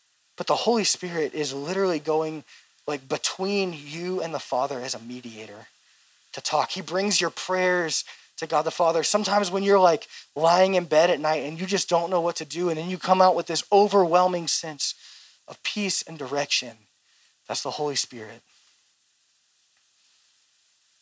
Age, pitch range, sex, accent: 20-39, 150-190 Hz, male, American